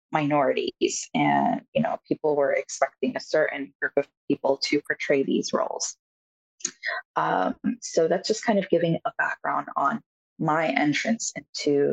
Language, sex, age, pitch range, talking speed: English, female, 20-39, 145-200 Hz, 145 wpm